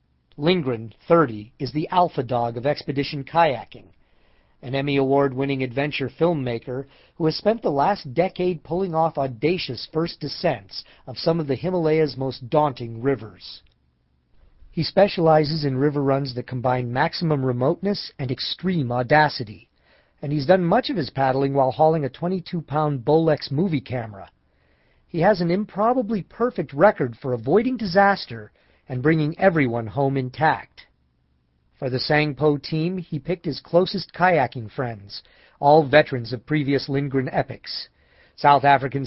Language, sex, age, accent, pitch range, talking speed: English, male, 40-59, American, 125-165 Hz, 140 wpm